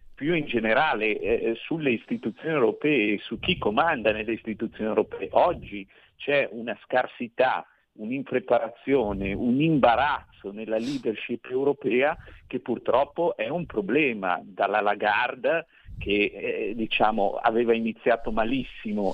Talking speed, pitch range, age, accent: 110 wpm, 110-150 Hz, 50-69, native